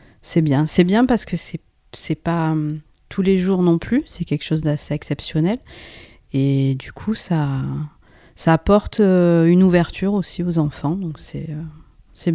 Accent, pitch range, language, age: French, 155-185 Hz, French, 40-59